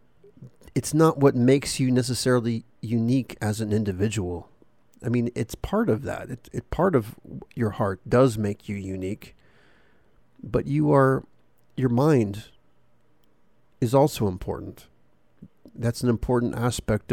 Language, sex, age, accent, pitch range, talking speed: English, male, 50-69, American, 105-125 Hz, 135 wpm